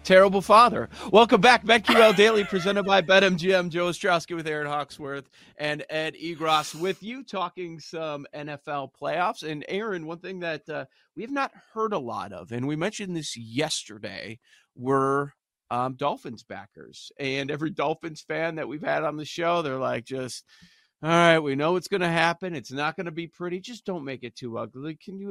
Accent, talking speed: American, 190 wpm